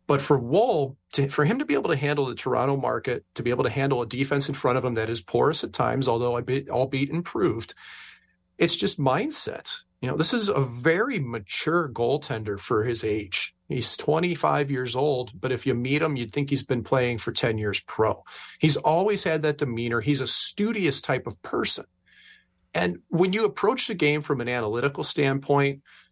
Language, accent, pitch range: English, American, 120-150 Hz